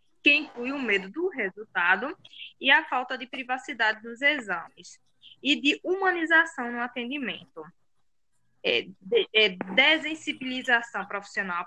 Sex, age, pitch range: female, 10-29, 215-300 Hz